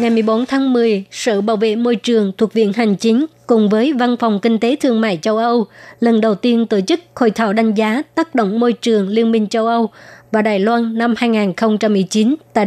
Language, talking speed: Vietnamese, 215 wpm